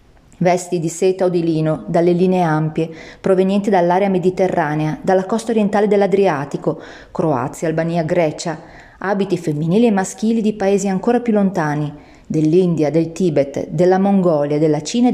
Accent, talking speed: native, 145 wpm